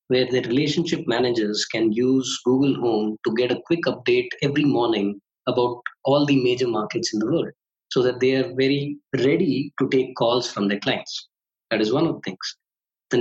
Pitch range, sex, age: 125-170 Hz, male, 20-39